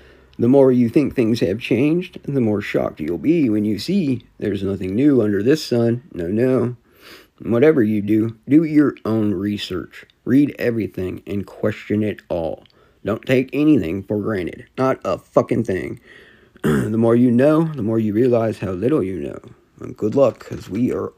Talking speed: 175 wpm